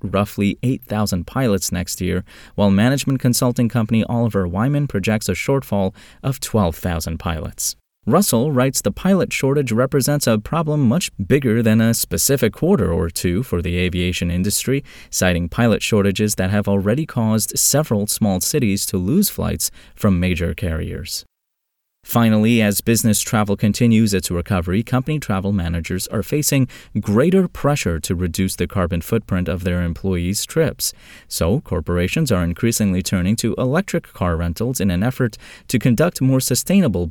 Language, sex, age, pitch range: English, male, 30-49, 90-125 Hz